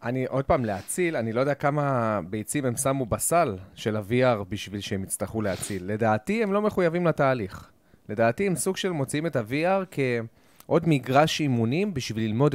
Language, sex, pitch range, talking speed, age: Hebrew, male, 115-155 Hz, 165 wpm, 30-49